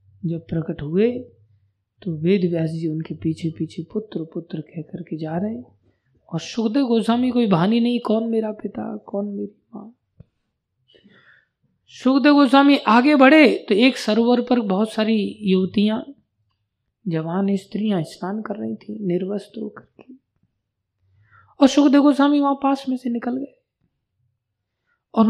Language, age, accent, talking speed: Hindi, 20-39, native, 135 wpm